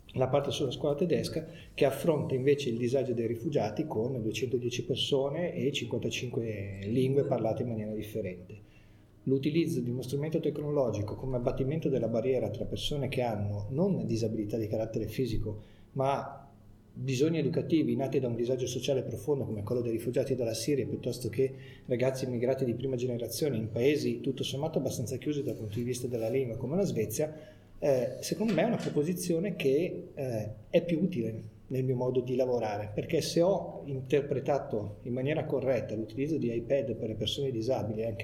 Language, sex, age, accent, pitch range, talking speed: Italian, male, 30-49, native, 110-140 Hz, 170 wpm